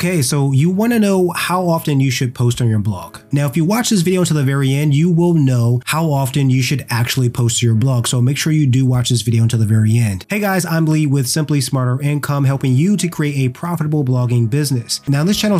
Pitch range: 120-150 Hz